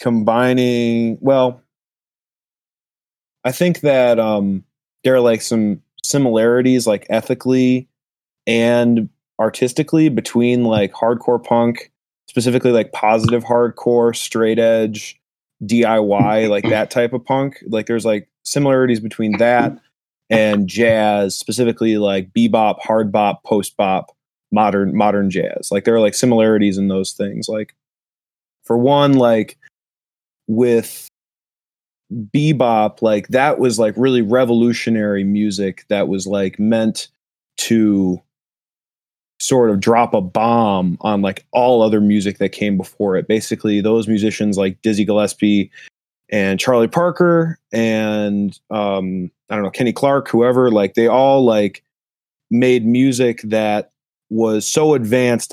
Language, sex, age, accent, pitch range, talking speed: English, male, 20-39, American, 105-125 Hz, 125 wpm